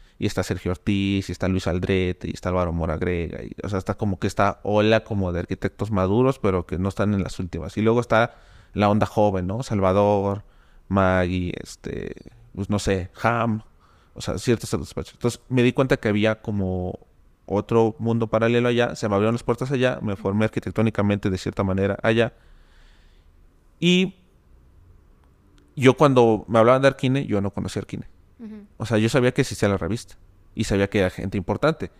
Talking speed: 180 wpm